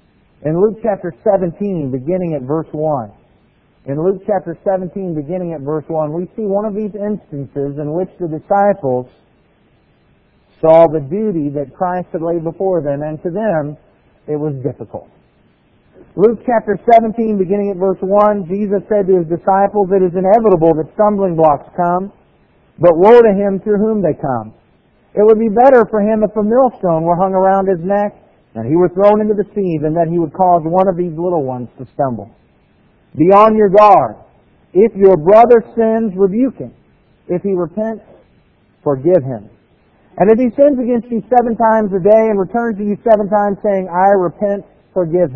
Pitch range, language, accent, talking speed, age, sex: 165-215 Hz, English, American, 180 wpm, 50-69, male